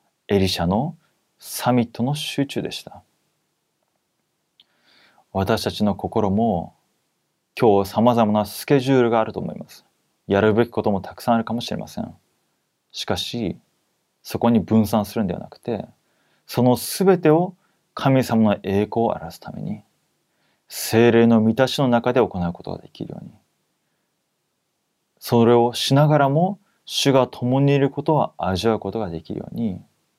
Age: 30-49